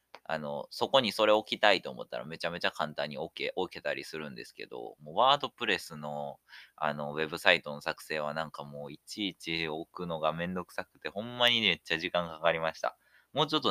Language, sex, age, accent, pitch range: Japanese, male, 20-39, native, 80-110 Hz